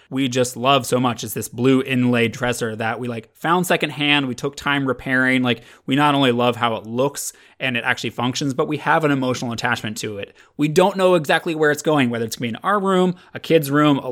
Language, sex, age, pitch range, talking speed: English, male, 20-39, 120-150 Hz, 240 wpm